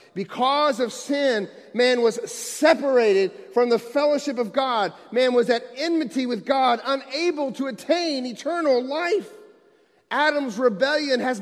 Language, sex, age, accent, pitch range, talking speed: English, male, 40-59, American, 220-280 Hz, 130 wpm